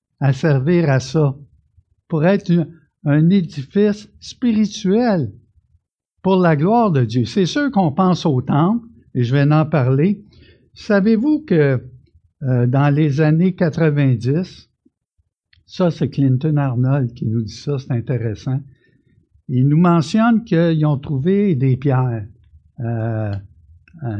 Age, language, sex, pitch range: 60-79, French, male, 110-165 Hz